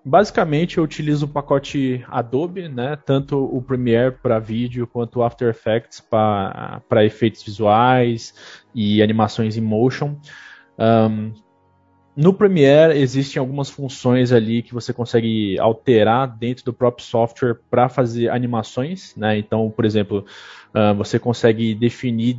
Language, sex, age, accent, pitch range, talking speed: Portuguese, male, 20-39, Brazilian, 110-130 Hz, 135 wpm